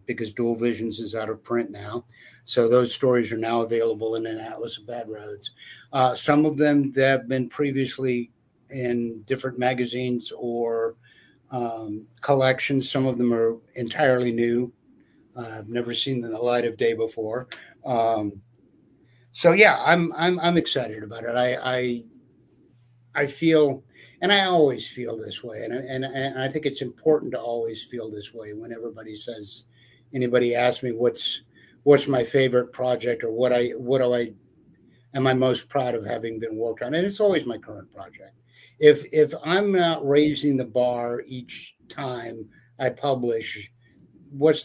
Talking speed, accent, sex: 170 wpm, American, male